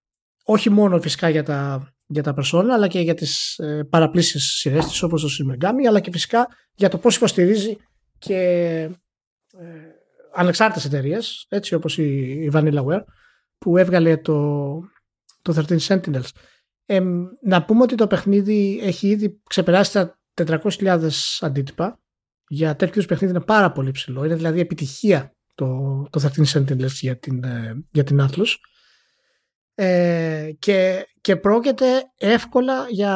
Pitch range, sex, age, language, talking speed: 160-200 Hz, male, 30-49, Greek, 145 wpm